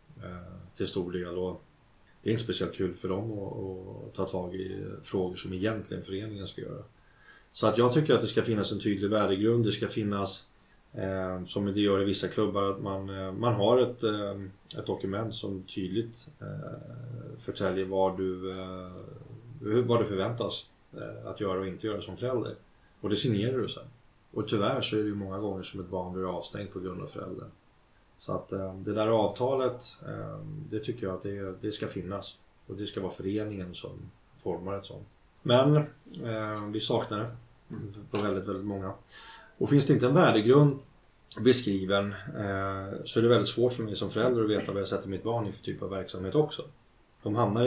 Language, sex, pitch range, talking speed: Swedish, male, 95-115 Hz, 185 wpm